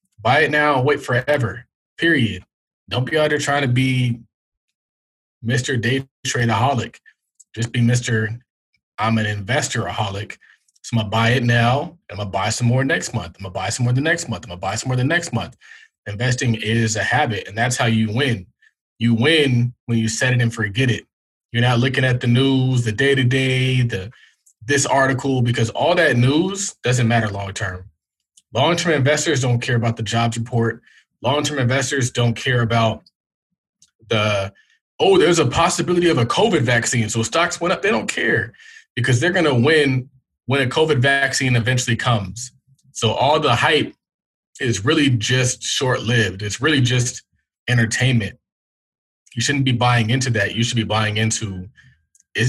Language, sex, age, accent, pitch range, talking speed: English, male, 20-39, American, 115-135 Hz, 180 wpm